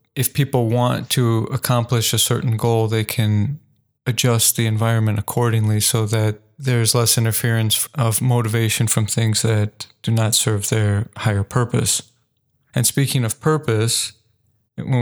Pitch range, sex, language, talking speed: 110-125 Hz, male, English, 140 wpm